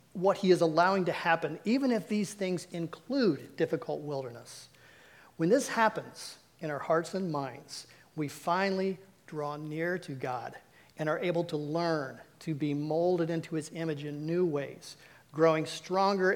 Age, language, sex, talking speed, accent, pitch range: 40-59, English, male, 160 wpm, American, 150-185 Hz